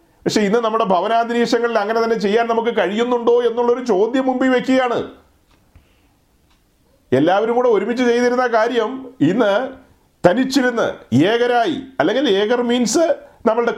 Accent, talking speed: native, 110 wpm